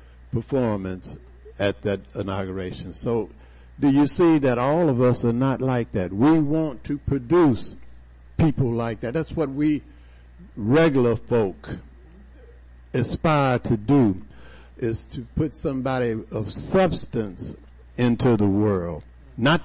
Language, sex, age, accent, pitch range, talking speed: English, male, 60-79, American, 95-125 Hz, 125 wpm